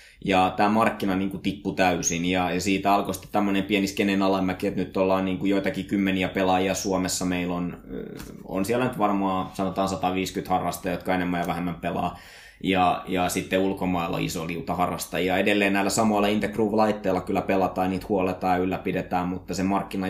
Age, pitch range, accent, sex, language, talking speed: 20-39, 90-100 Hz, native, male, Finnish, 160 wpm